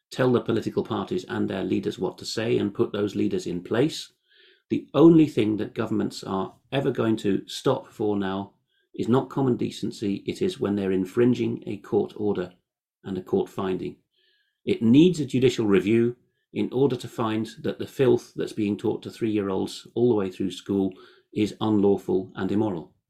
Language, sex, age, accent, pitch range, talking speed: English, male, 40-59, British, 100-125 Hz, 180 wpm